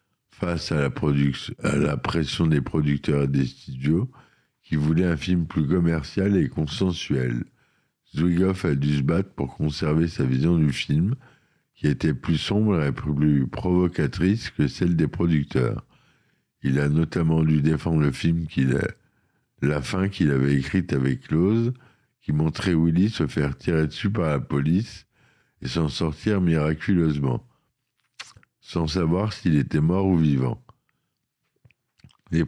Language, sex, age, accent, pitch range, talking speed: French, male, 60-79, French, 75-90 Hz, 150 wpm